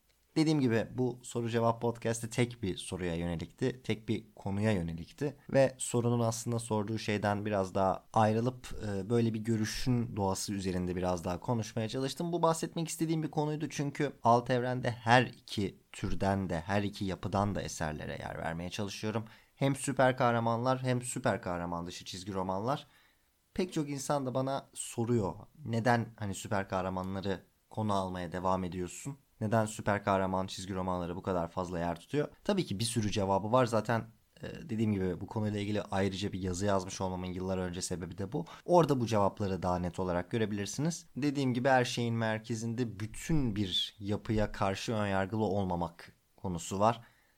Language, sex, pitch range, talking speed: Turkish, male, 95-125 Hz, 160 wpm